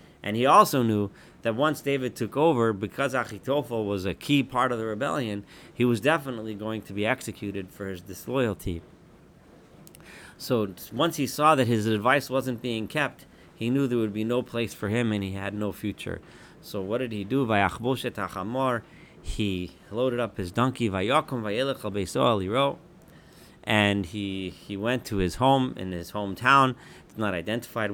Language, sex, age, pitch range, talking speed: English, male, 40-59, 100-125 Hz, 160 wpm